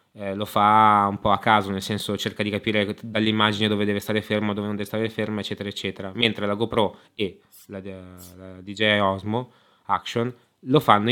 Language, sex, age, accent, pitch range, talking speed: Italian, male, 20-39, native, 100-120 Hz, 190 wpm